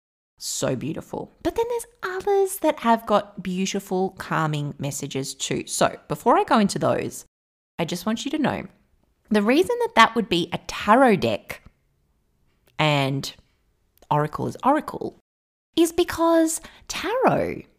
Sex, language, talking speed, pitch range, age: female, English, 140 wpm, 160-235 Hz, 30-49